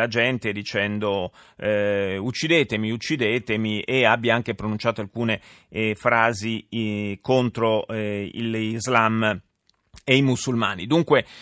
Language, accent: Italian, native